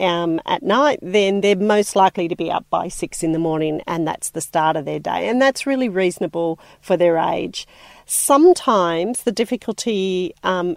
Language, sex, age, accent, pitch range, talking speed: English, female, 40-59, Australian, 170-225 Hz, 185 wpm